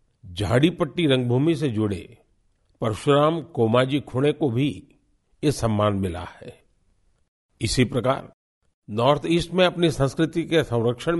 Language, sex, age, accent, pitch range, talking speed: Hindi, male, 50-69, native, 105-145 Hz, 120 wpm